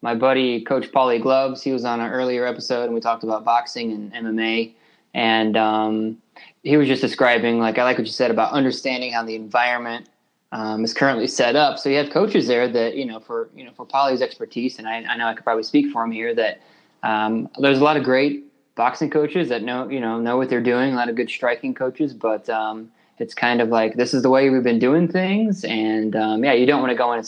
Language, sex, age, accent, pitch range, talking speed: English, male, 20-39, American, 110-130 Hz, 245 wpm